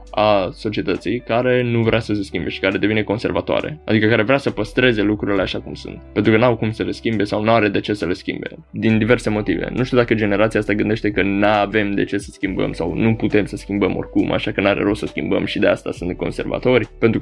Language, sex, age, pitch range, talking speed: Romanian, male, 20-39, 105-125 Hz, 240 wpm